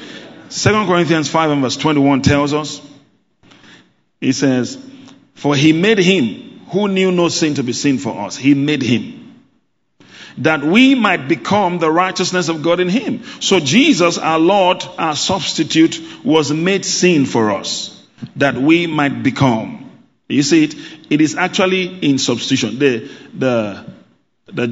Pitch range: 130-165 Hz